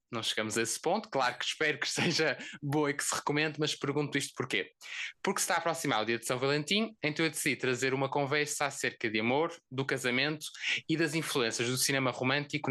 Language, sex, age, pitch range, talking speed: Portuguese, male, 20-39, 125-155 Hz, 215 wpm